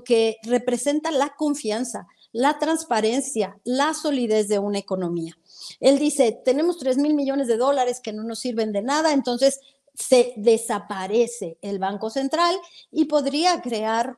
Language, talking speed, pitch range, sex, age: Spanish, 145 wpm, 215-285 Hz, female, 40-59